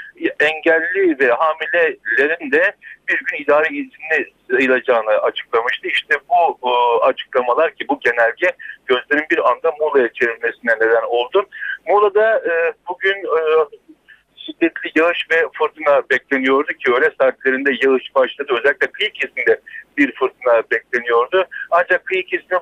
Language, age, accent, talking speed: Turkish, 60-79, native, 125 wpm